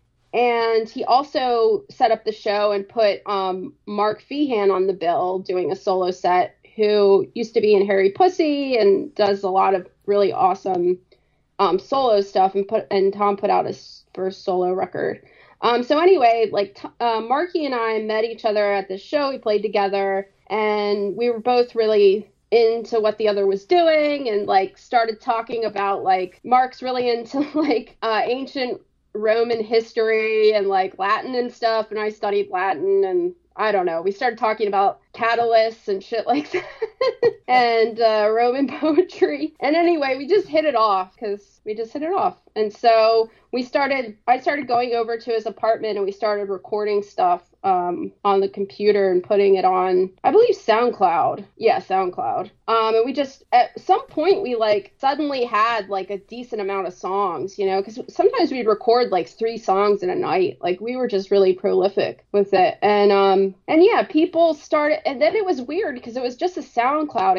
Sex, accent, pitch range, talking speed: female, American, 200-290 Hz, 185 wpm